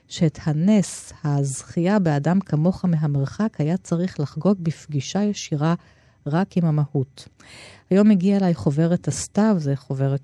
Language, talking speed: Hebrew, 125 wpm